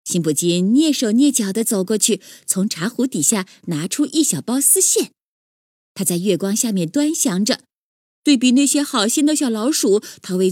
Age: 20-39